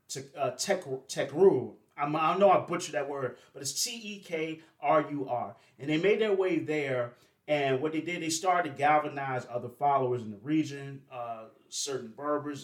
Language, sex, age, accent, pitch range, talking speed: English, male, 30-49, American, 125-165 Hz, 195 wpm